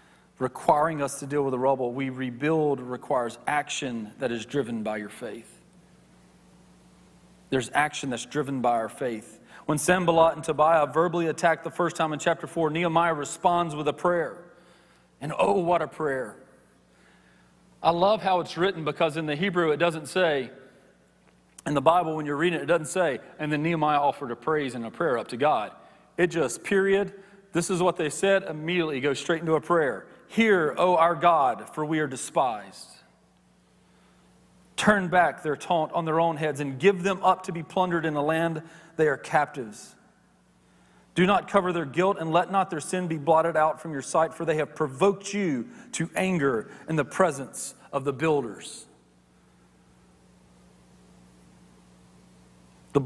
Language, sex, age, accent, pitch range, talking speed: English, male, 40-59, American, 130-175 Hz, 175 wpm